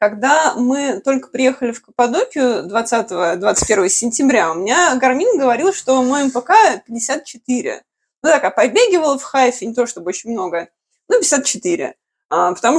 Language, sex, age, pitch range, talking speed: Russian, female, 20-39, 220-295 Hz, 140 wpm